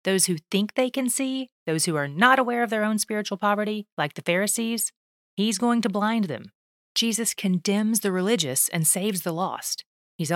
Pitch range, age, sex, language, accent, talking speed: 170-215 Hz, 30-49, female, English, American, 190 wpm